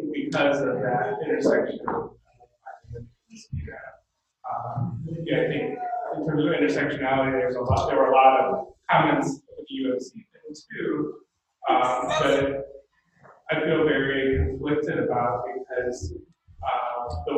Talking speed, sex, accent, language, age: 130 wpm, male, American, English, 30-49